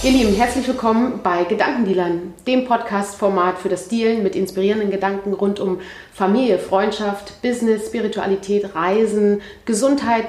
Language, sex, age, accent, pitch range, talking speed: German, female, 30-49, German, 190-230 Hz, 130 wpm